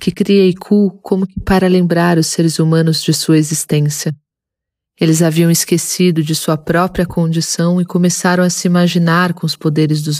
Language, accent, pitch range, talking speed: Portuguese, Brazilian, 160-185 Hz, 165 wpm